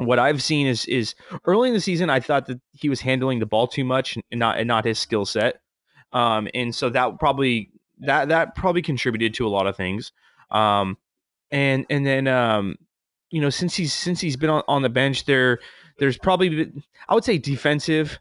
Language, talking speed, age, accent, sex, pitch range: English, 210 wpm, 20-39, American, male, 115-150 Hz